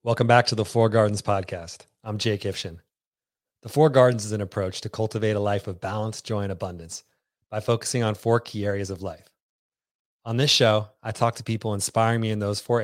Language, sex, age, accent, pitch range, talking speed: English, male, 30-49, American, 100-115 Hz, 210 wpm